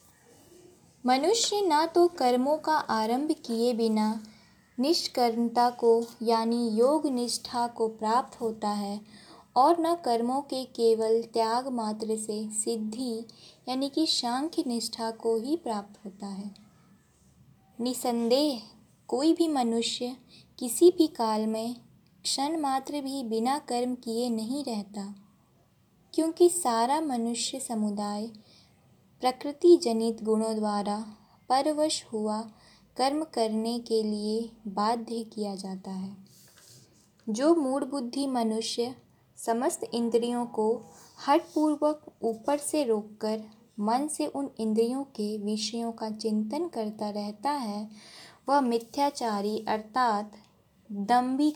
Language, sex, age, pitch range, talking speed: Hindi, female, 20-39, 220-270 Hz, 110 wpm